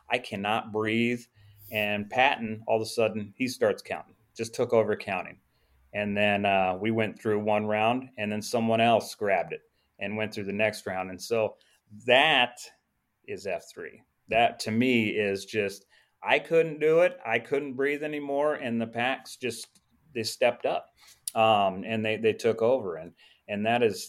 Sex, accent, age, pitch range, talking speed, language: male, American, 30-49, 100-115 Hz, 175 wpm, English